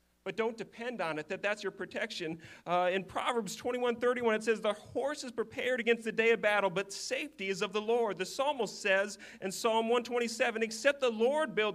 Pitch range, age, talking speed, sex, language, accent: 210-250 Hz, 40-59, 210 wpm, male, English, American